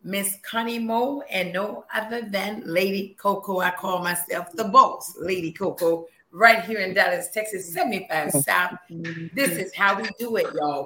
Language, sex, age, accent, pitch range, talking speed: English, female, 40-59, American, 185-230 Hz, 165 wpm